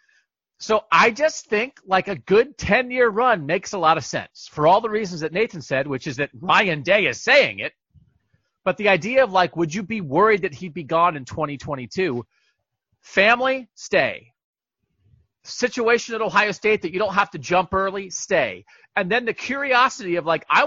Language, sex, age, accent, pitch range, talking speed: English, male, 40-59, American, 150-220 Hz, 190 wpm